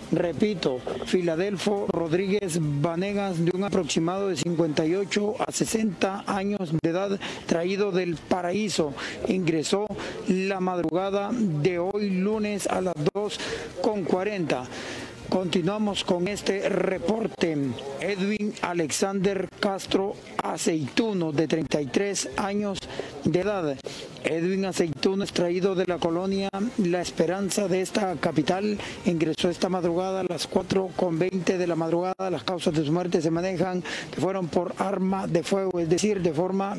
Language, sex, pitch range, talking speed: Spanish, male, 175-200 Hz, 125 wpm